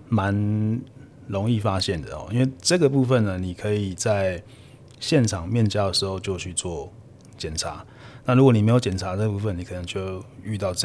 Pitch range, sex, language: 95-120 Hz, male, Chinese